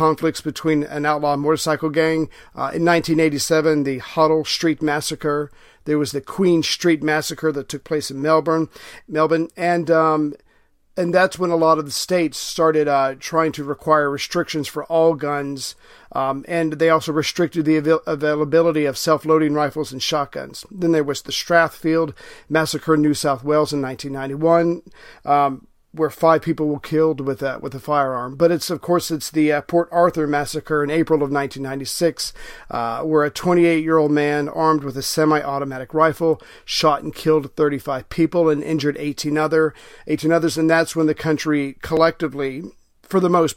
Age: 40-59